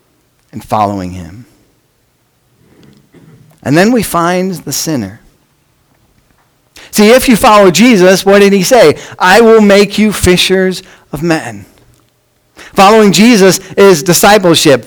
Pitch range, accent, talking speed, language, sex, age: 150-205 Hz, American, 115 wpm, English, male, 50-69